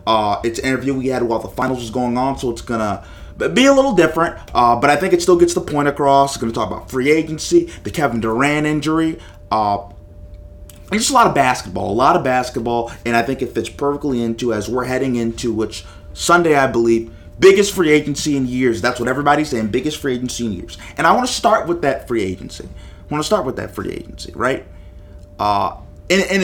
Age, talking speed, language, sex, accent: 30-49, 220 wpm, English, male, American